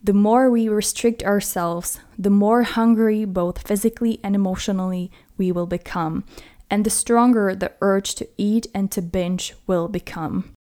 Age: 20-39